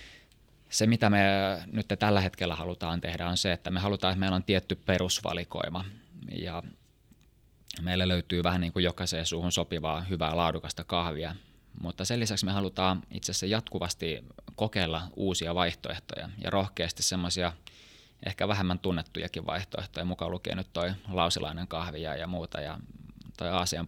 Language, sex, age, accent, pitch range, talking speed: Finnish, male, 20-39, native, 85-95 Hz, 145 wpm